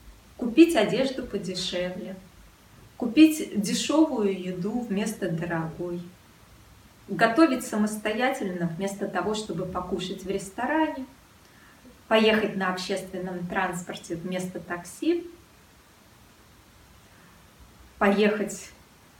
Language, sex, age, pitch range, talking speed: Russian, female, 20-39, 185-260 Hz, 70 wpm